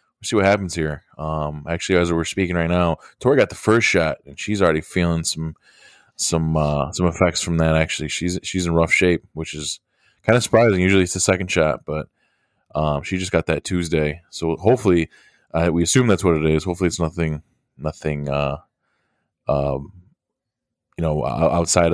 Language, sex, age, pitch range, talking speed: English, male, 20-39, 80-95 Hz, 185 wpm